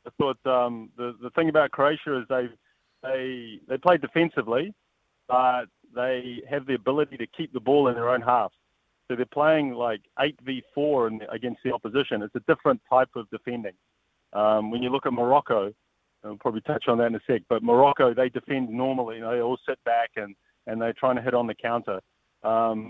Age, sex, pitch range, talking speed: 30-49, male, 115-135 Hz, 205 wpm